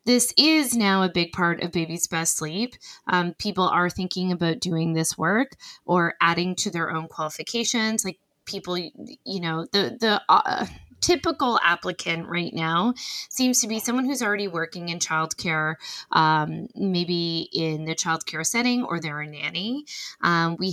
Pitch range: 165-220 Hz